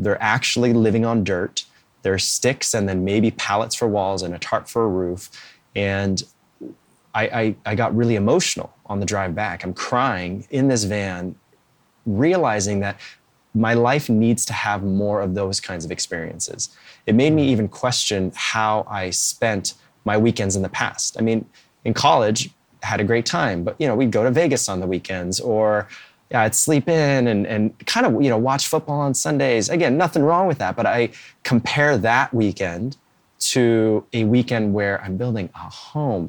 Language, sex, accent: English, male, American